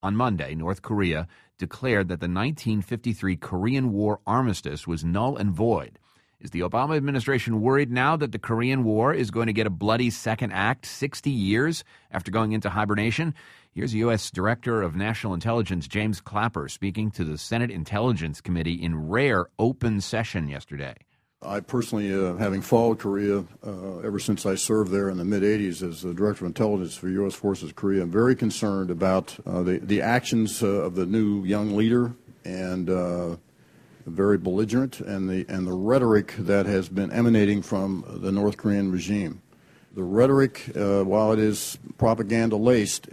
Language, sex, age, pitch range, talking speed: English, male, 40-59, 95-115 Hz, 165 wpm